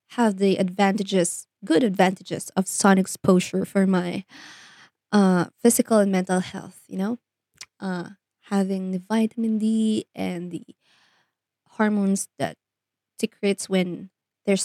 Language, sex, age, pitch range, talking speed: Filipino, female, 20-39, 195-245 Hz, 120 wpm